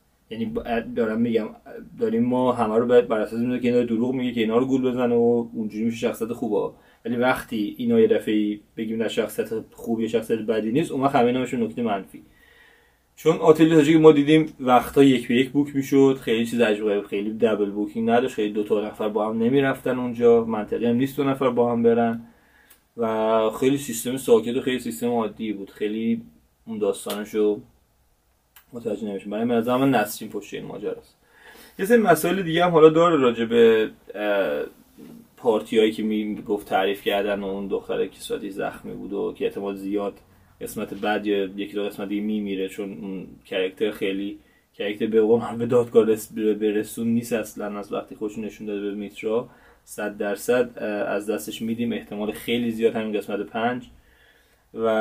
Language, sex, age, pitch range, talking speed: Persian, male, 20-39, 105-135 Hz, 175 wpm